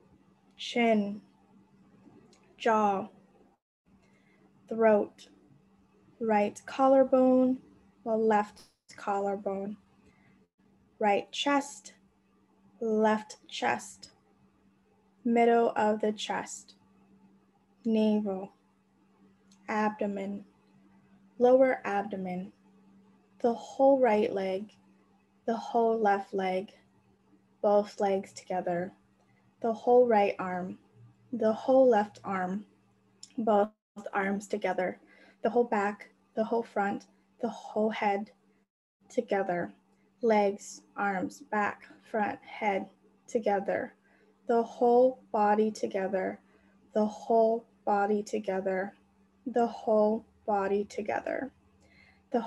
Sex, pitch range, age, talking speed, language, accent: female, 200-230 Hz, 10-29, 80 wpm, English, American